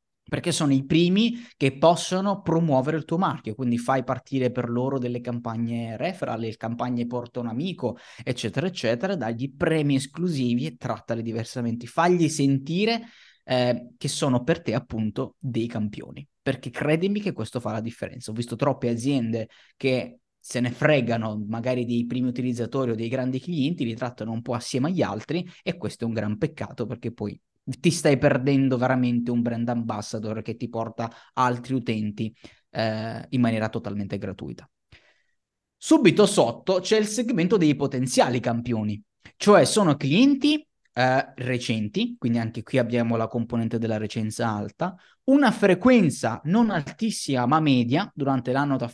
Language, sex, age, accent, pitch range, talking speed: Italian, male, 20-39, native, 115-170 Hz, 155 wpm